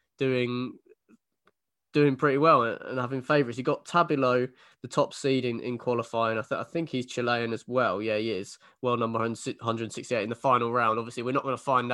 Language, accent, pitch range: English, British, 115-135 Hz